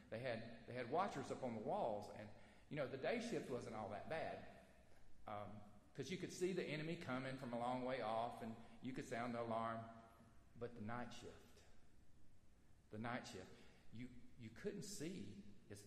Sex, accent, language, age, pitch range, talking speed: male, American, English, 50-69, 105-160 Hz, 190 wpm